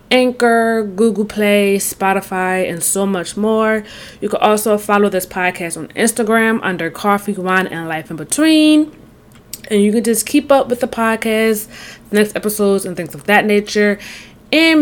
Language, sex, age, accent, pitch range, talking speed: English, female, 20-39, American, 185-235 Hz, 160 wpm